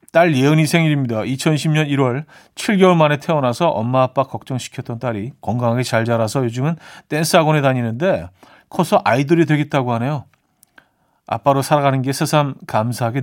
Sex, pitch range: male, 115-155 Hz